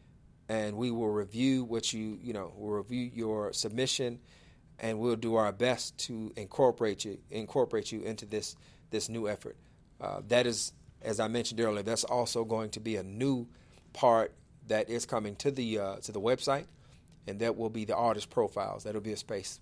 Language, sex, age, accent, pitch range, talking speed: English, male, 40-59, American, 105-120 Hz, 190 wpm